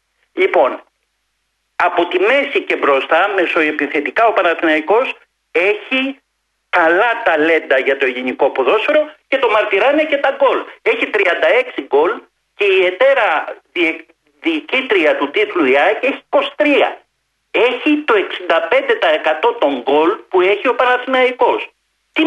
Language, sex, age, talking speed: Greek, male, 50-69, 120 wpm